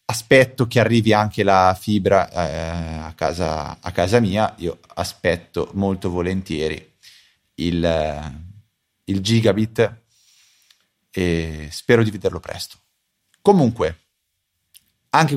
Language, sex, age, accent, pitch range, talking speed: Italian, male, 30-49, native, 90-115 Hz, 100 wpm